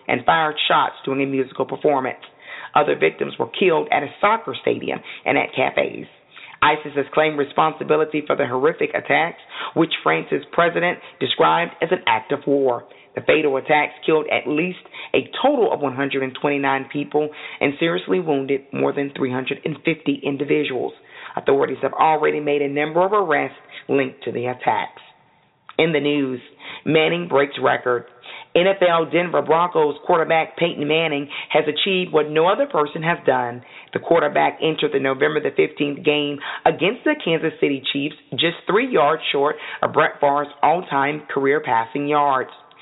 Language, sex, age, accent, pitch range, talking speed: English, female, 40-59, American, 140-160 Hz, 155 wpm